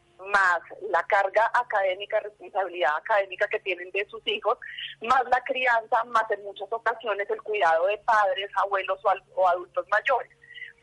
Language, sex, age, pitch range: Spanish, female, 30-49, 195-255 Hz